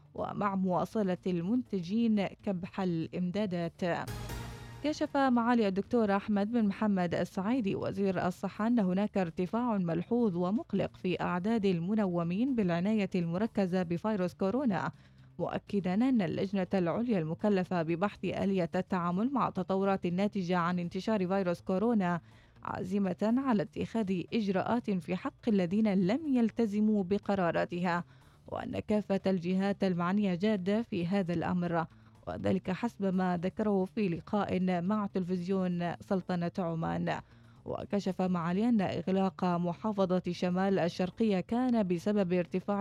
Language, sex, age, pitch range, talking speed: Arabic, female, 20-39, 175-210 Hz, 110 wpm